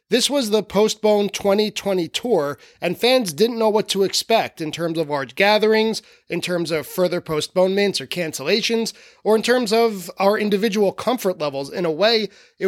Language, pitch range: English, 165-210 Hz